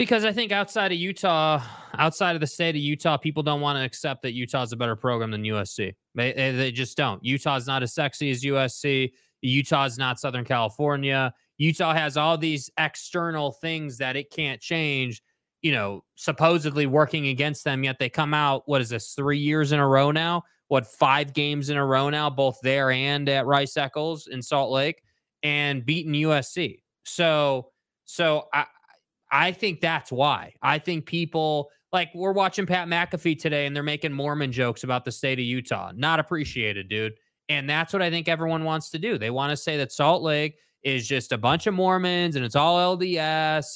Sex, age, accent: male, 20-39, American